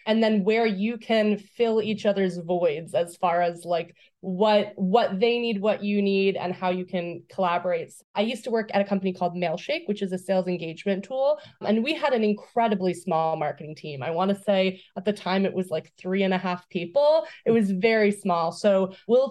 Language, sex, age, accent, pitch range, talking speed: English, female, 20-39, American, 190-230 Hz, 215 wpm